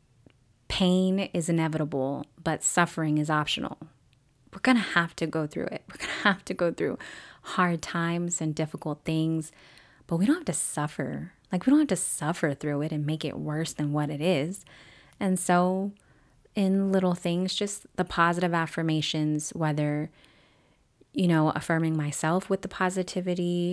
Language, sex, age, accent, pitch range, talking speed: English, female, 20-39, American, 155-195 Hz, 165 wpm